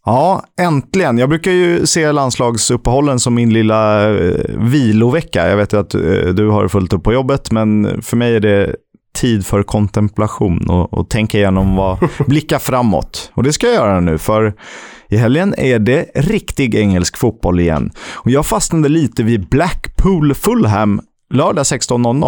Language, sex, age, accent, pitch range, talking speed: Swedish, male, 30-49, native, 95-125 Hz, 155 wpm